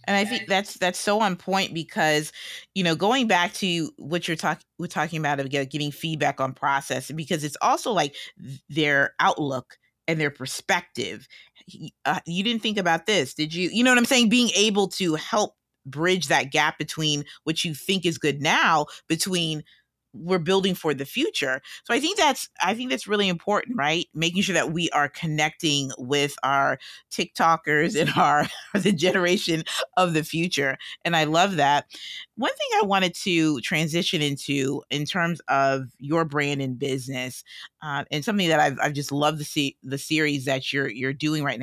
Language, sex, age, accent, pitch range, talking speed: English, female, 30-49, American, 145-185 Hz, 185 wpm